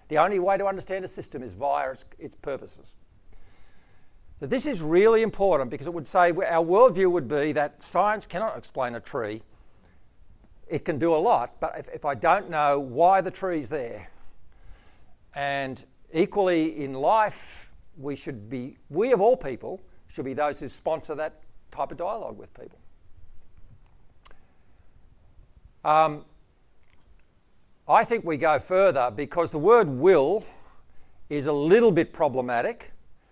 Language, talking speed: English, 150 wpm